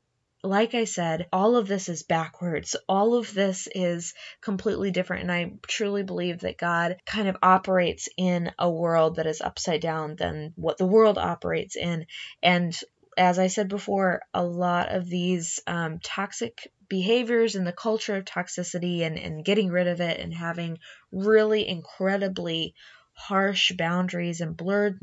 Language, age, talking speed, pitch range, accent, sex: English, 20-39, 160 wpm, 165-195 Hz, American, female